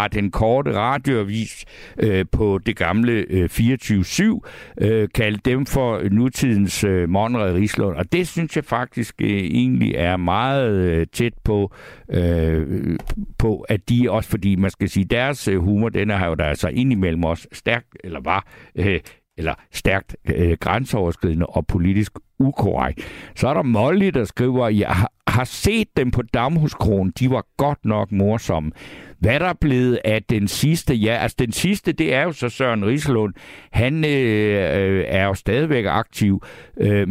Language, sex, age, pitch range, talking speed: Danish, male, 60-79, 95-130 Hz, 165 wpm